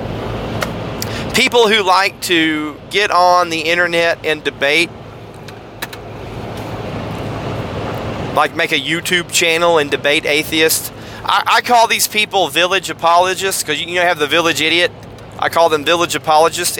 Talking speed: 135 wpm